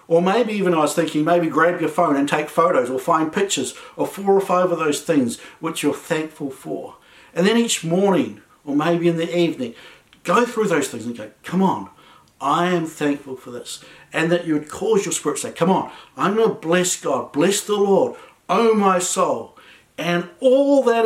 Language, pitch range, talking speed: English, 130-180 Hz, 210 wpm